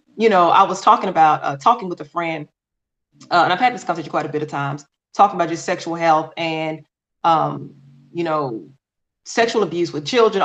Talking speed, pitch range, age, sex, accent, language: 200 wpm, 165-225 Hz, 30-49, female, American, English